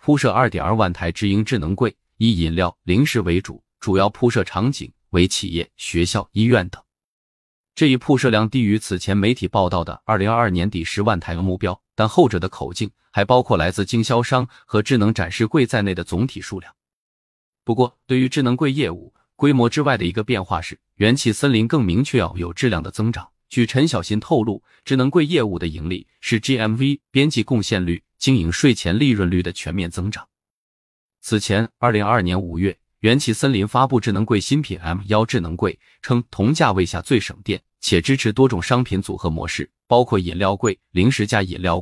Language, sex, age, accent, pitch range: Chinese, male, 20-39, native, 90-125 Hz